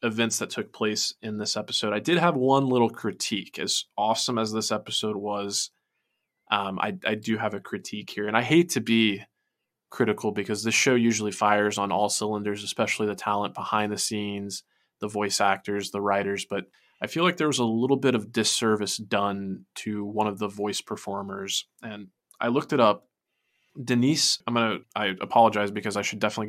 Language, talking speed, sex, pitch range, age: English, 190 wpm, male, 105-120 Hz, 20-39